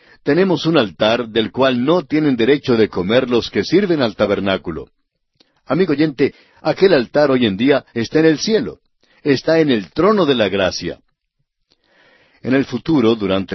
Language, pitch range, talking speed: Spanish, 110-150 Hz, 165 wpm